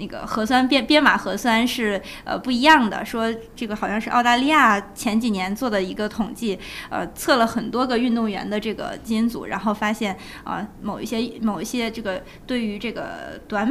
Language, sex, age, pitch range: Chinese, female, 20-39, 210-255 Hz